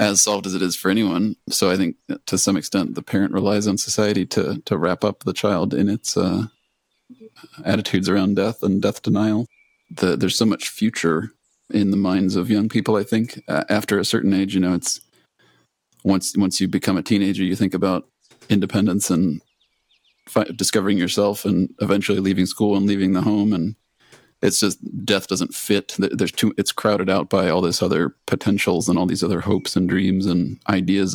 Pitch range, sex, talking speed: 95-105 Hz, male, 190 wpm